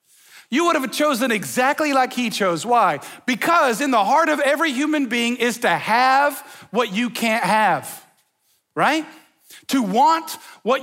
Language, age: English, 40-59